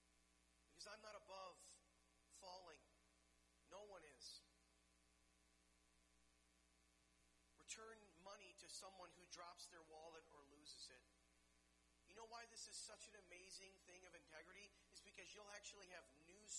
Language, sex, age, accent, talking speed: English, male, 40-59, American, 125 wpm